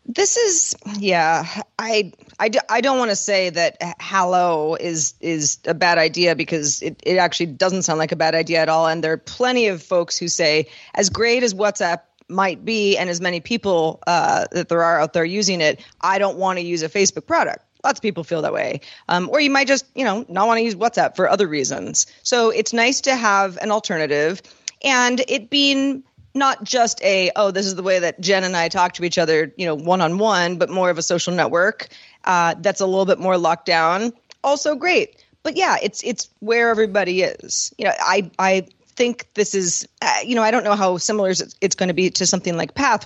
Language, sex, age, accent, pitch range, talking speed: English, female, 30-49, American, 170-230 Hz, 225 wpm